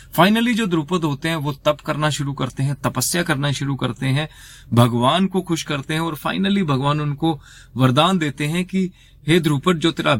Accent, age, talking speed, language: native, 30-49, 190 wpm, Hindi